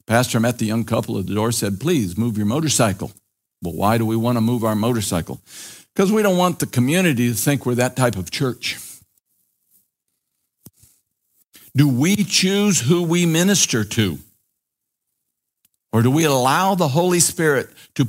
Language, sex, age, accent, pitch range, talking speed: English, male, 60-79, American, 110-150 Hz, 165 wpm